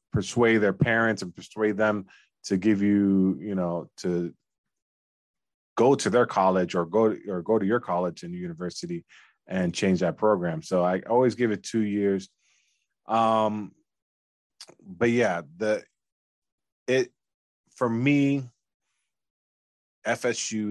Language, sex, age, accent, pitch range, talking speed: English, male, 20-39, American, 95-115 Hz, 135 wpm